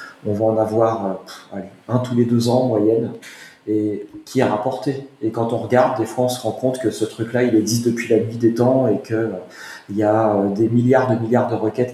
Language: French